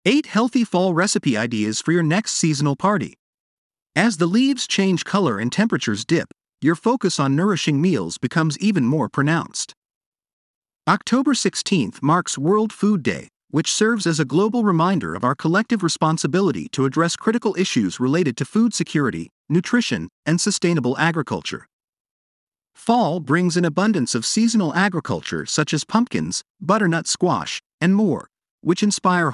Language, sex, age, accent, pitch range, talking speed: English, male, 50-69, American, 150-210 Hz, 145 wpm